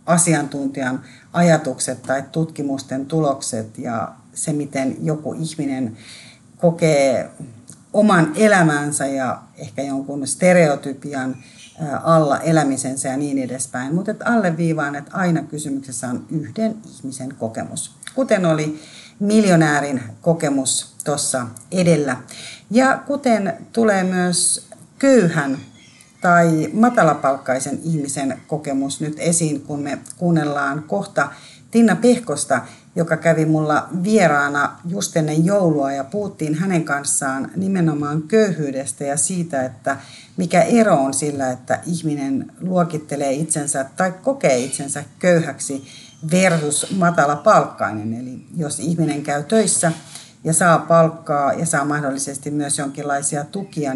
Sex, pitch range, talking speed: female, 135-170 Hz, 110 wpm